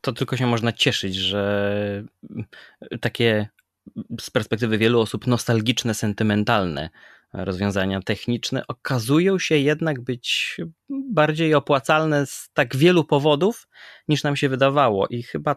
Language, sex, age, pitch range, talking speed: Polish, male, 20-39, 120-165 Hz, 120 wpm